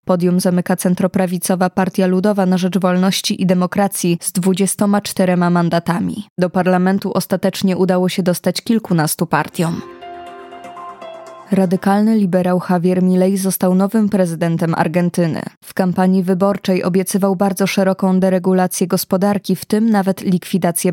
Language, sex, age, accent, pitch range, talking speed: Polish, female, 20-39, native, 185-200 Hz, 120 wpm